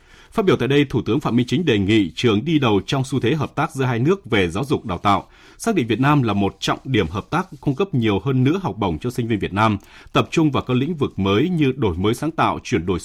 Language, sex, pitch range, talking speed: Vietnamese, male, 100-140 Hz, 290 wpm